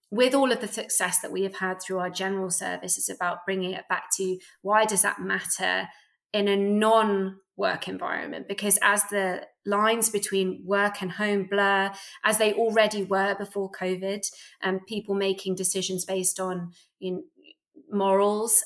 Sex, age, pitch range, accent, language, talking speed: female, 20-39, 185-205 Hz, British, English, 165 wpm